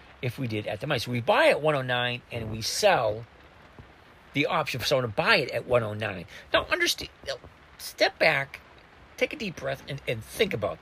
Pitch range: 90-140 Hz